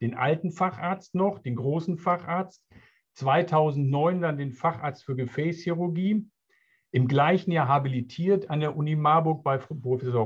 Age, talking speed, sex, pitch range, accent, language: 50-69, 135 wpm, male, 130-170 Hz, German, German